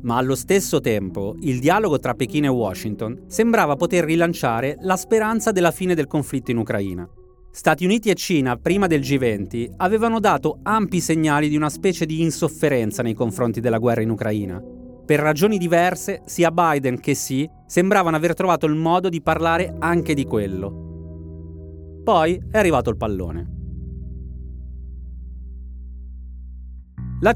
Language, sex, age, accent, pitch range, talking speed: Italian, male, 30-49, native, 110-170 Hz, 145 wpm